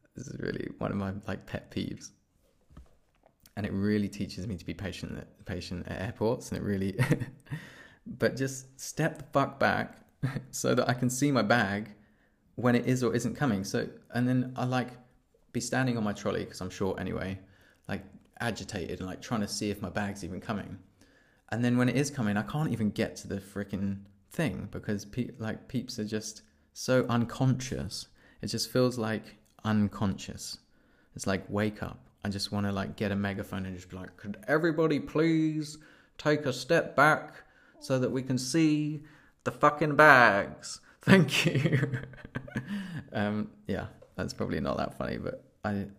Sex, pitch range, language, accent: male, 100-125 Hz, English, British